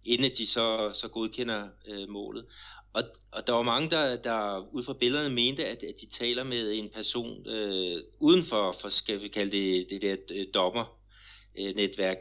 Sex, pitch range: male, 100-120 Hz